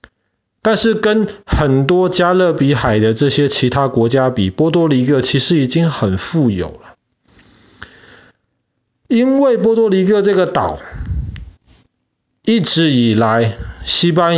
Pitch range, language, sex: 120-170 Hz, Chinese, male